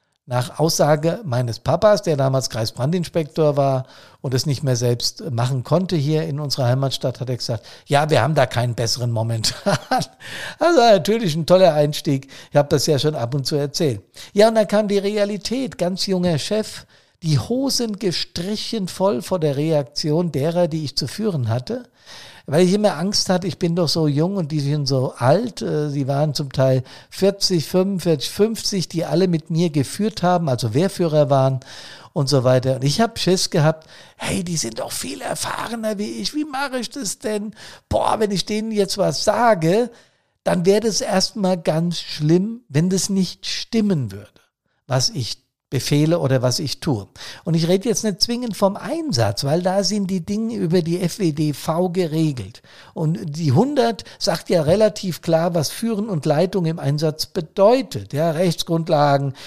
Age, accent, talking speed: 50-69, German, 180 wpm